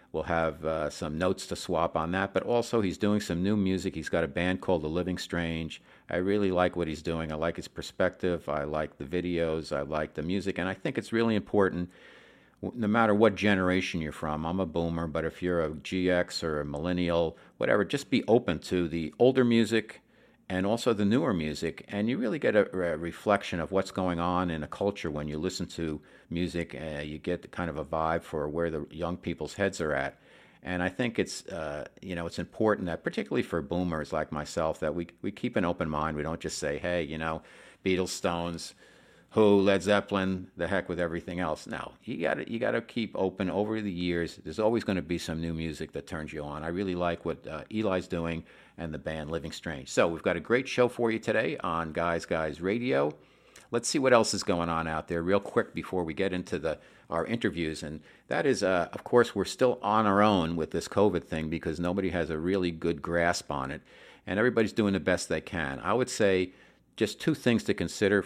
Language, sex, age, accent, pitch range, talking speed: English, male, 50-69, American, 80-95 Hz, 225 wpm